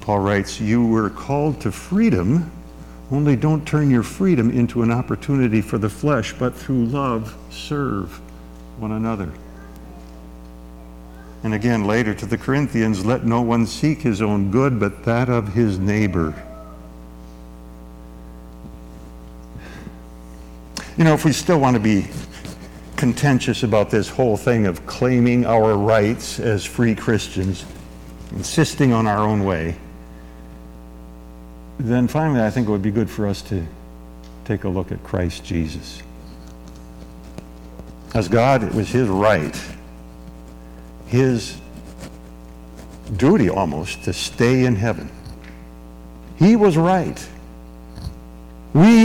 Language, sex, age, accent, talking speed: English, male, 50-69, American, 125 wpm